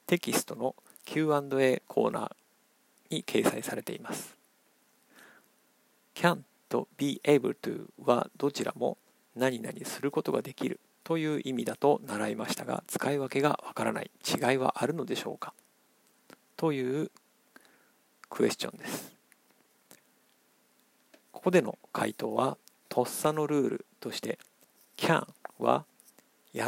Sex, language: male, Japanese